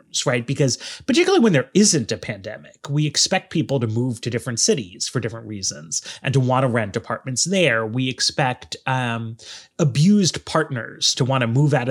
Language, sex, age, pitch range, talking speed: English, male, 30-49, 125-175 Hz, 180 wpm